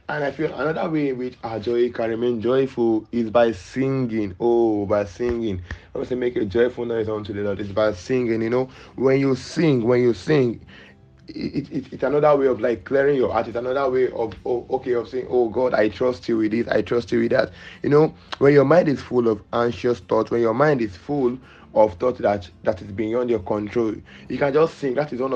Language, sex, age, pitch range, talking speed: English, male, 20-39, 115-130 Hz, 225 wpm